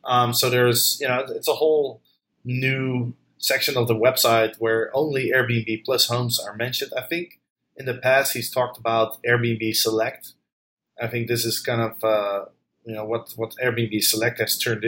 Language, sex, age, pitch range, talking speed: English, male, 20-39, 115-130 Hz, 180 wpm